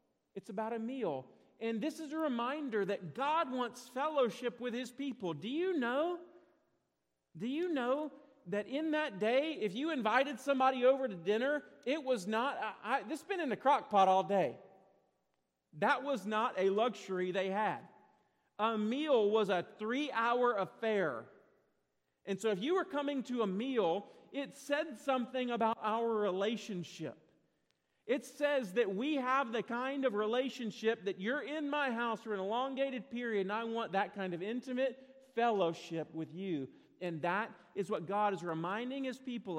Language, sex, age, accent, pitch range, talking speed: English, male, 40-59, American, 190-265 Hz, 165 wpm